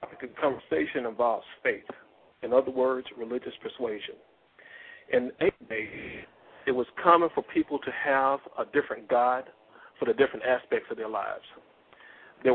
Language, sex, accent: English, male, American